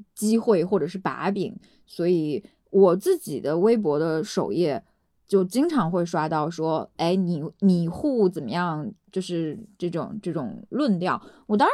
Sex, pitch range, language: female, 175-220 Hz, Chinese